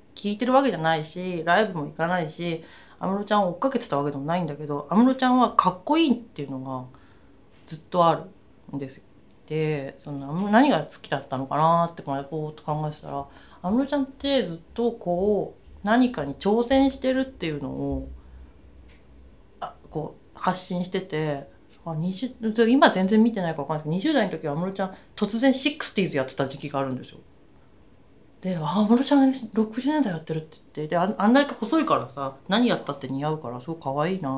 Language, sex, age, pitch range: Japanese, female, 30-49, 145-235 Hz